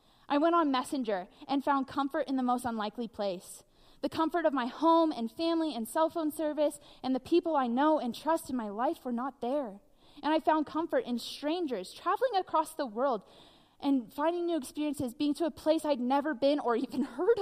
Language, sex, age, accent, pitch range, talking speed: English, female, 20-39, American, 245-315 Hz, 205 wpm